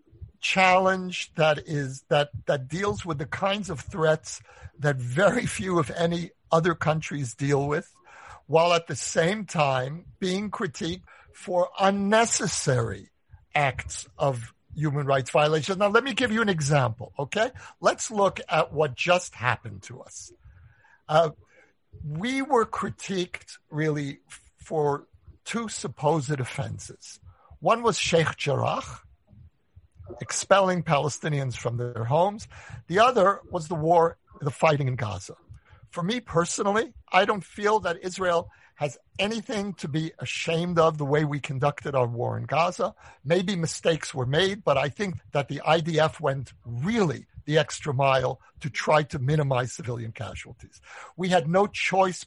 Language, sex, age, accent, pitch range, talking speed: English, male, 60-79, American, 130-180 Hz, 140 wpm